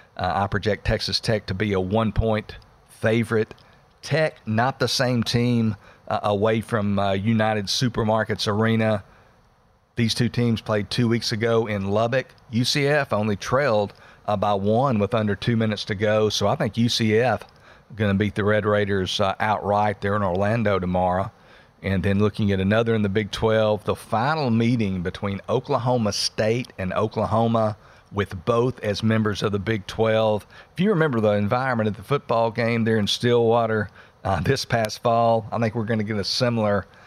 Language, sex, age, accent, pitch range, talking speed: English, male, 50-69, American, 105-115 Hz, 175 wpm